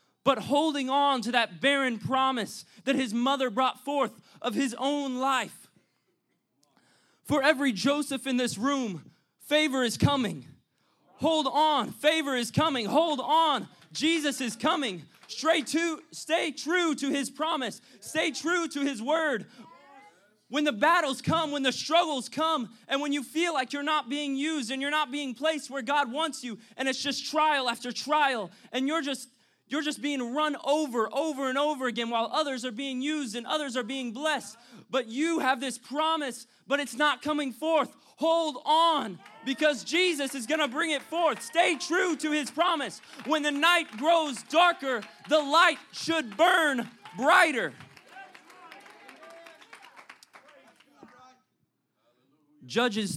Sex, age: male, 20-39